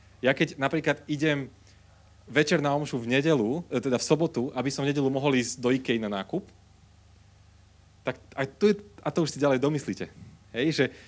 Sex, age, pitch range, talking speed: male, 30-49, 100-125 Hz, 175 wpm